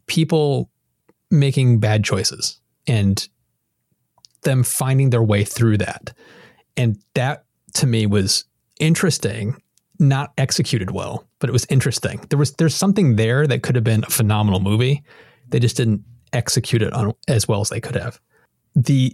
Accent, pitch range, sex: American, 115-150 Hz, male